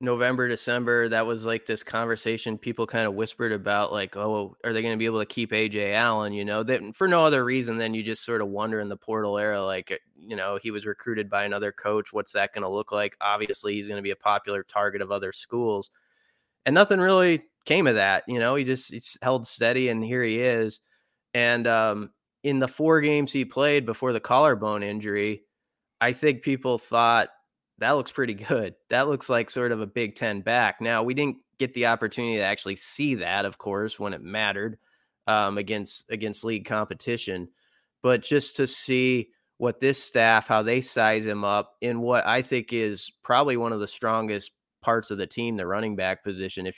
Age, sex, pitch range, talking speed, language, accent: 20-39, male, 105-125 Hz, 210 wpm, English, American